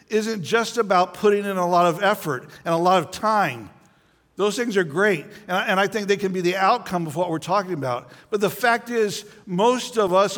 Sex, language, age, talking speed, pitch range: male, English, 60-79, 225 wpm, 155-200 Hz